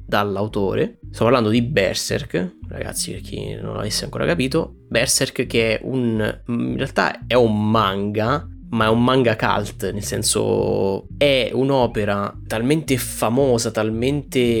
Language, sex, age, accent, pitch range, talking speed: Italian, male, 20-39, native, 100-115 Hz, 135 wpm